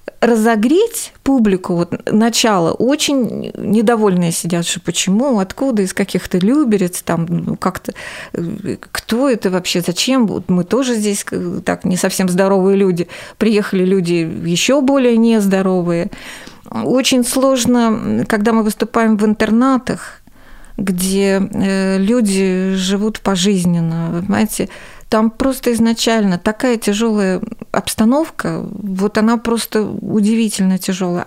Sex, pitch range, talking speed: female, 195-235 Hz, 110 wpm